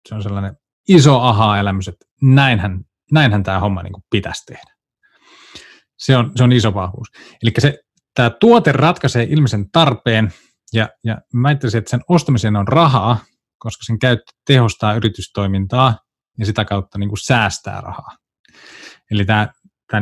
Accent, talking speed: native, 145 wpm